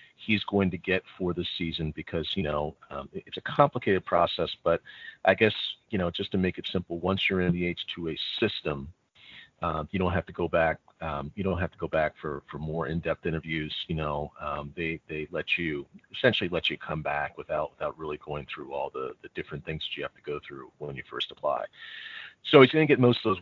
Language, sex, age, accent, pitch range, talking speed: English, male, 40-59, American, 85-115 Hz, 230 wpm